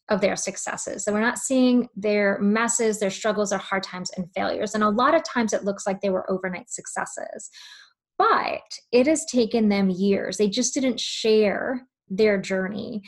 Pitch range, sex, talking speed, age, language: 200-250 Hz, female, 185 wpm, 20-39, English